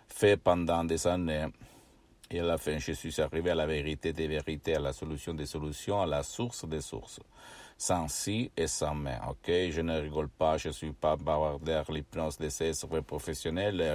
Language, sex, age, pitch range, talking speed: Italian, male, 60-79, 80-100 Hz, 200 wpm